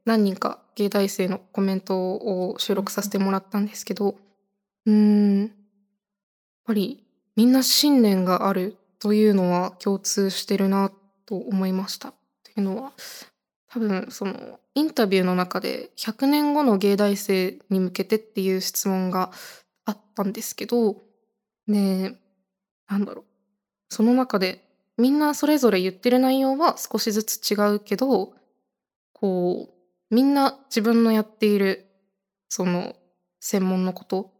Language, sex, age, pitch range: Japanese, female, 20-39, 190-225 Hz